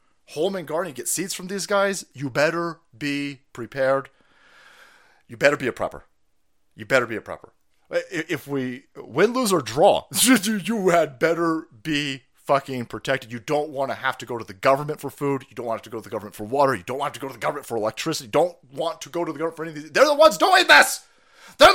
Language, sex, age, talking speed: English, male, 30-49, 235 wpm